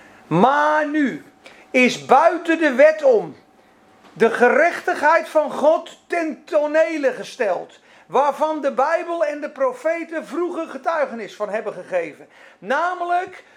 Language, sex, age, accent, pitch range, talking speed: Dutch, male, 40-59, Dutch, 275-350 Hz, 115 wpm